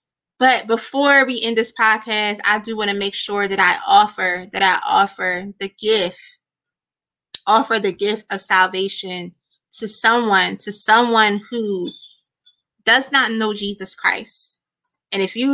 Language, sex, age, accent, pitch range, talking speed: English, female, 20-39, American, 195-260 Hz, 145 wpm